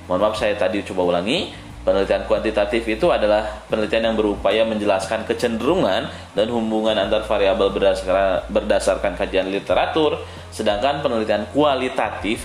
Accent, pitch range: native, 90-120 Hz